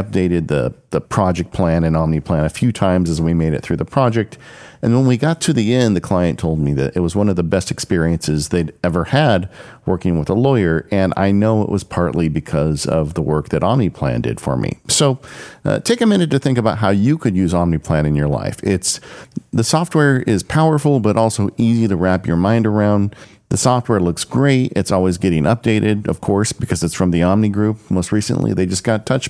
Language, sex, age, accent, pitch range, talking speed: English, male, 50-69, American, 85-125 Hz, 225 wpm